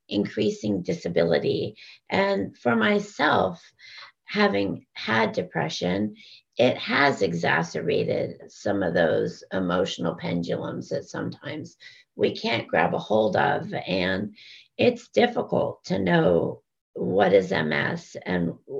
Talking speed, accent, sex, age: 105 wpm, American, female, 40-59